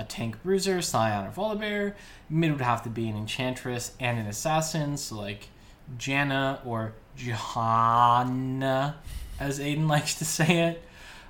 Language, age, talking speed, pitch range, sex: English, 10-29, 145 wpm, 115-160 Hz, male